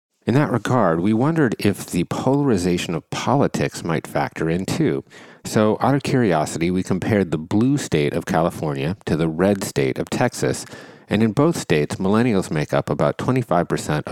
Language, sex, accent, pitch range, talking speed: English, male, American, 85-120 Hz, 170 wpm